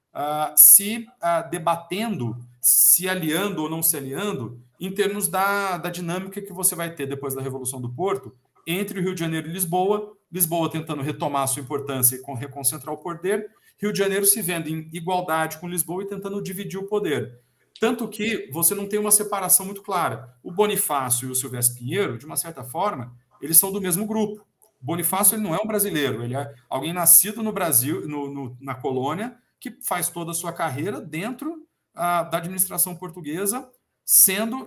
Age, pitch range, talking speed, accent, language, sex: 50-69, 145-200 Hz, 190 wpm, Brazilian, Portuguese, male